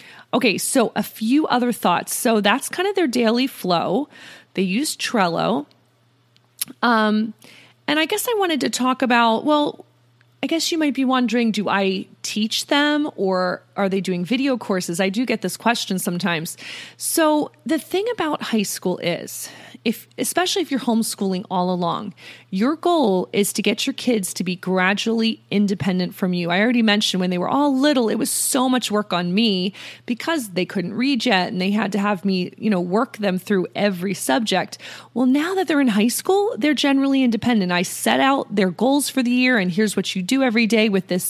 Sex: female